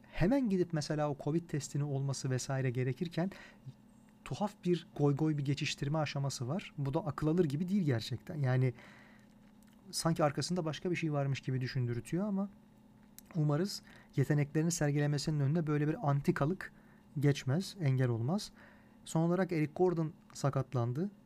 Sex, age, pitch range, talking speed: male, 40-59, 125-165 Hz, 140 wpm